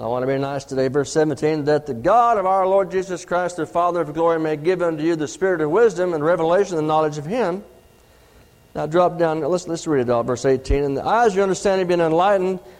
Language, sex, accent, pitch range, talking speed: English, male, American, 155-225 Hz, 245 wpm